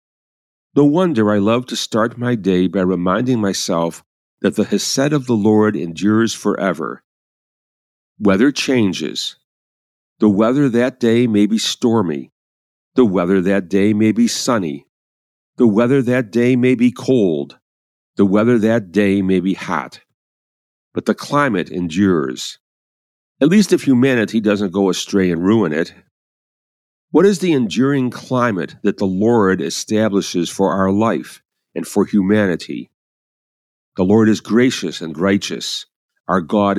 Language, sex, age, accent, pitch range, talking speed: English, male, 50-69, American, 95-125 Hz, 140 wpm